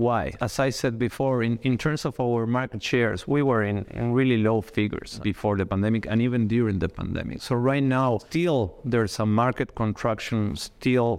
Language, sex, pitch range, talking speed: English, male, 105-125 Hz, 195 wpm